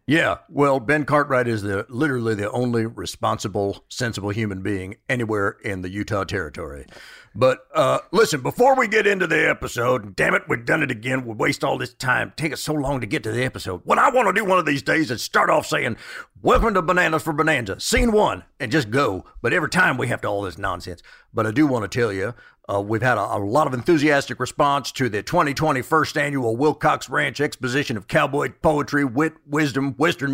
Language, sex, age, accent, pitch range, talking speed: English, male, 50-69, American, 125-170 Hz, 215 wpm